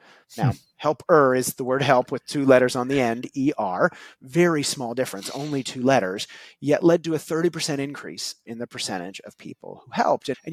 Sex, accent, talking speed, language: male, American, 195 wpm, English